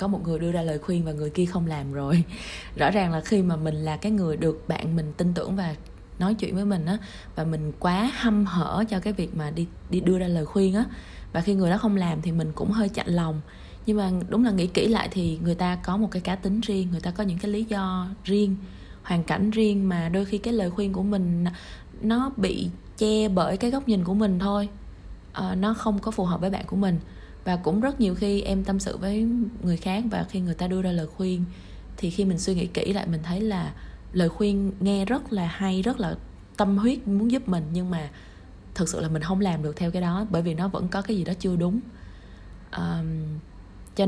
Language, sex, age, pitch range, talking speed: Vietnamese, female, 20-39, 170-205 Hz, 245 wpm